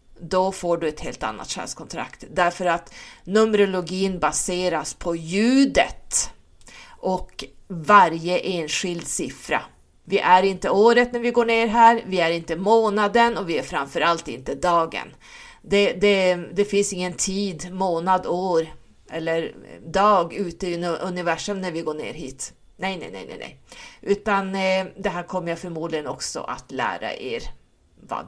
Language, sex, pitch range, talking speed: Swedish, female, 175-240 Hz, 145 wpm